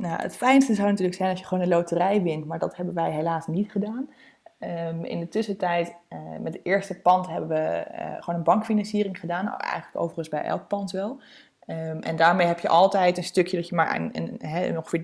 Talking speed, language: 205 wpm, Dutch